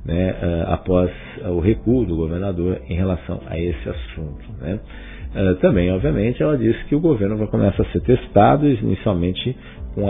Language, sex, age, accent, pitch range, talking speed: Portuguese, male, 50-69, Brazilian, 85-110 Hz, 155 wpm